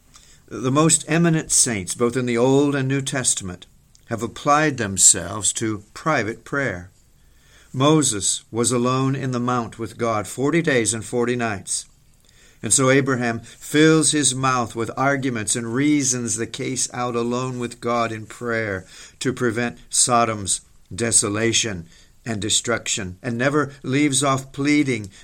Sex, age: male, 50-69